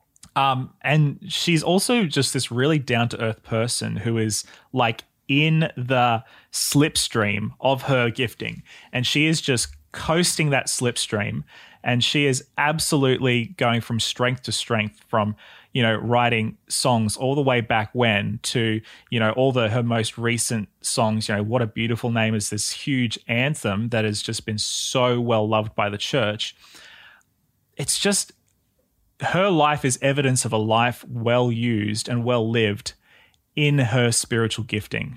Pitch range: 115-150 Hz